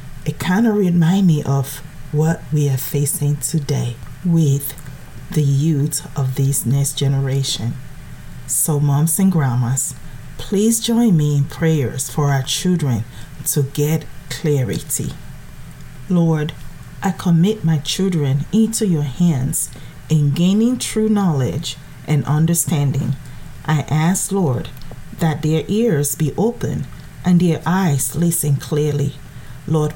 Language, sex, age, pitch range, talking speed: English, female, 40-59, 140-170 Hz, 120 wpm